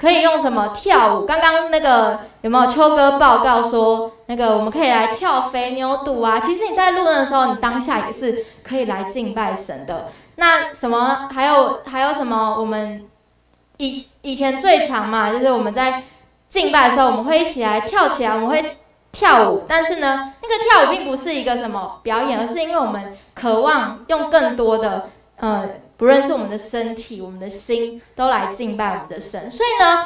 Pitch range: 225-290 Hz